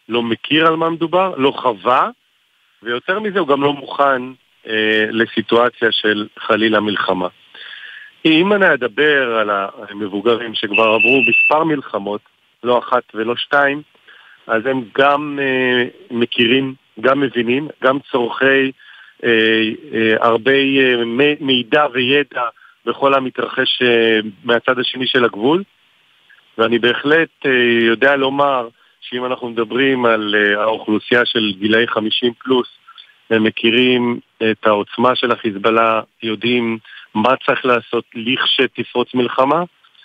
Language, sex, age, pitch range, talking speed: Hebrew, male, 50-69, 110-135 Hz, 120 wpm